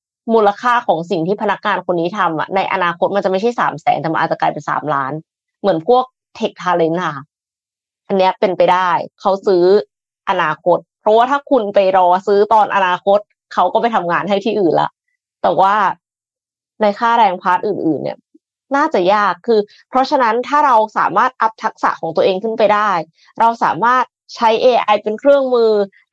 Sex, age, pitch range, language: female, 20-39, 180-240 Hz, Thai